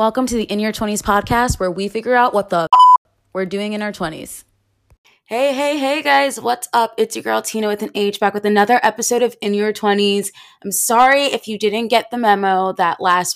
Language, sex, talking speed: English, female, 225 wpm